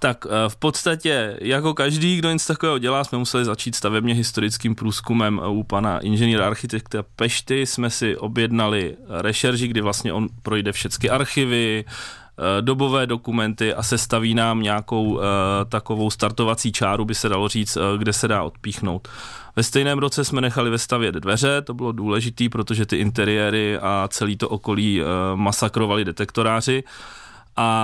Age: 20-39